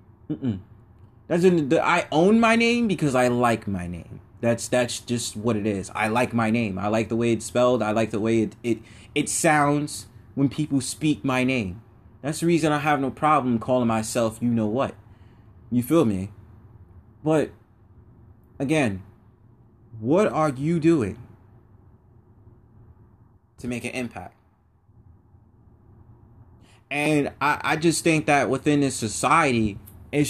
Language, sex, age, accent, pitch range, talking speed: English, male, 20-39, American, 110-145 Hz, 155 wpm